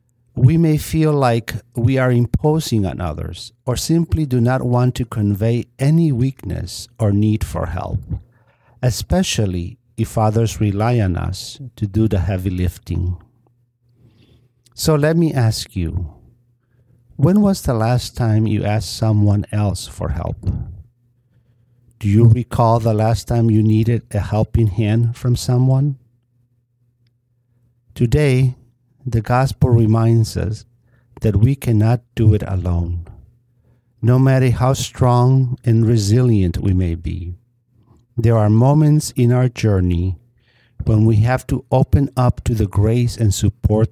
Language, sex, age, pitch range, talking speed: English, male, 50-69, 105-125 Hz, 135 wpm